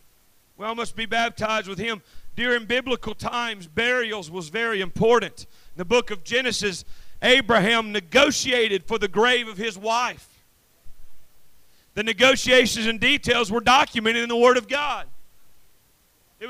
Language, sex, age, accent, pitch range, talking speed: English, male, 40-59, American, 235-300 Hz, 140 wpm